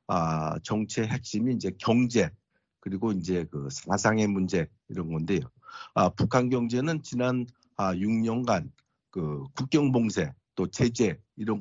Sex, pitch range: male, 100-135 Hz